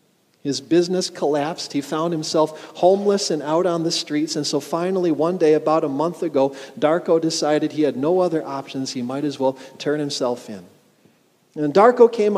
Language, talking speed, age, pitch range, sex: English, 185 wpm, 40-59, 135-170 Hz, male